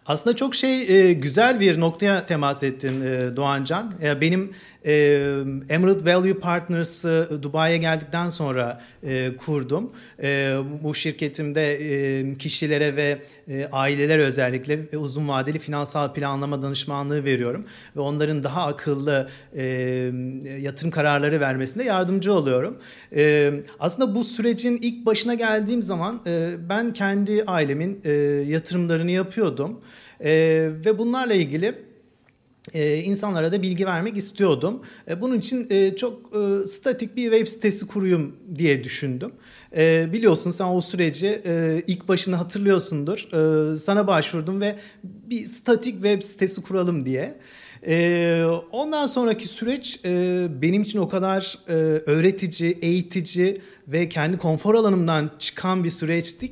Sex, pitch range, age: male, 150-200 Hz, 40-59